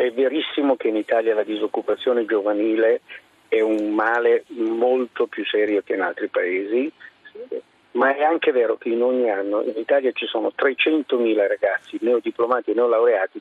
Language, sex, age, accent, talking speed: Italian, male, 50-69, native, 155 wpm